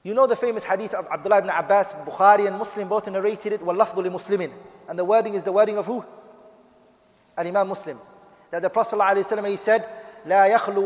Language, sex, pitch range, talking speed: English, male, 190-220 Hz, 180 wpm